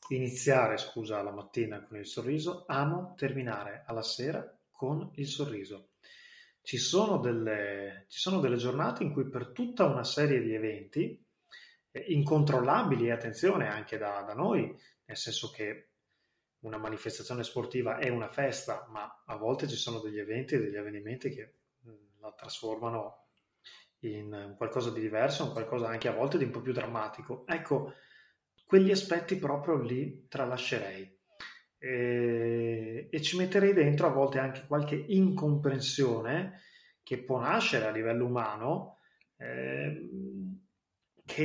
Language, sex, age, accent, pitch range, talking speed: Italian, male, 20-39, native, 115-160 Hz, 140 wpm